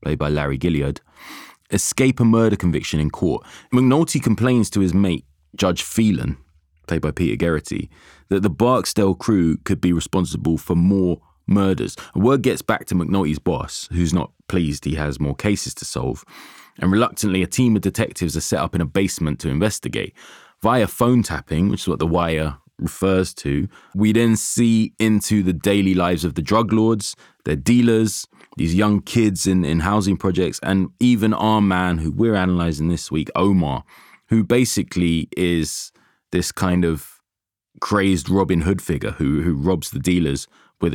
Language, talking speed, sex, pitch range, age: English, 170 wpm, male, 85-105 Hz, 20-39